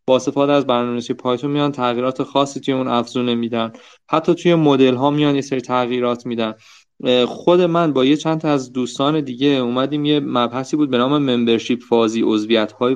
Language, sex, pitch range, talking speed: Persian, male, 125-155 Hz, 175 wpm